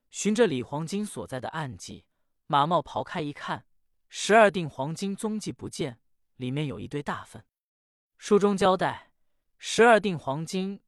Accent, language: native, Chinese